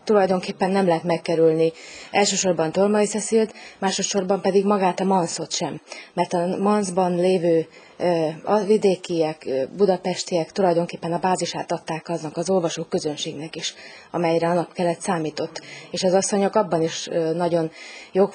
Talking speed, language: 130 wpm, Hungarian